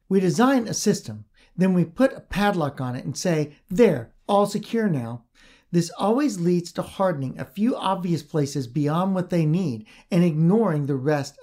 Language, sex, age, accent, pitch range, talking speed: English, male, 50-69, American, 145-200 Hz, 180 wpm